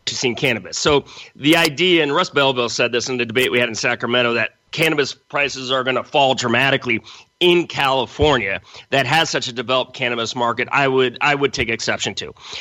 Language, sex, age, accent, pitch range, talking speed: English, male, 30-49, American, 125-155 Hz, 195 wpm